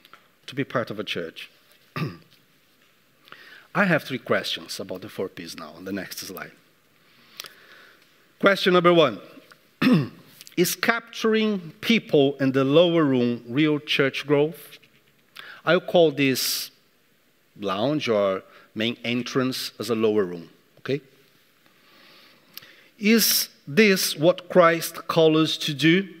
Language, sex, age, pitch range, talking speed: English, male, 50-69, 140-200 Hz, 120 wpm